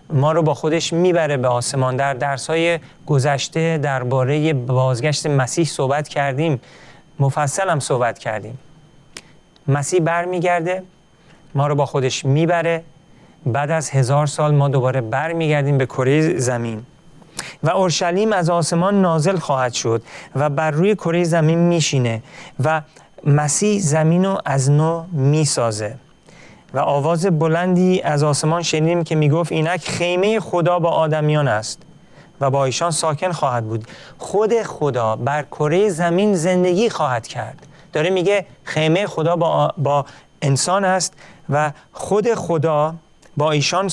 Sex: male